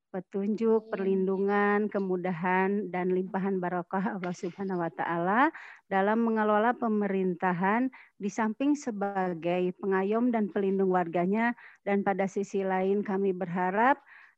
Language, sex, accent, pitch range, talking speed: Indonesian, female, native, 200-230 Hz, 110 wpm